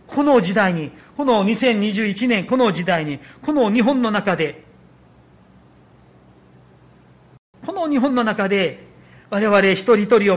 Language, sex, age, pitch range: Japanese, male, 40-59, 135-225 Hz